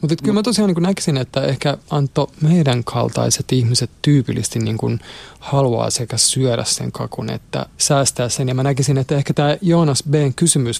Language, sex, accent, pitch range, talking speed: Finnish, male, native, 120-145 Hz, 180 wpm